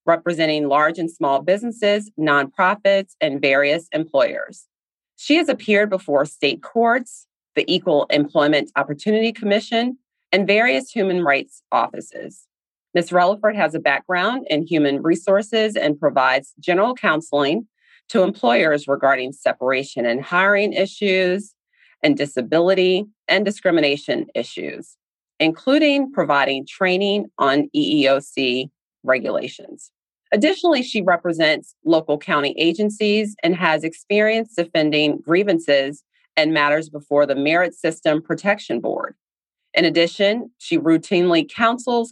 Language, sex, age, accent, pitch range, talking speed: English, female, 30-49, American, 145-210 Hz, 115 wpm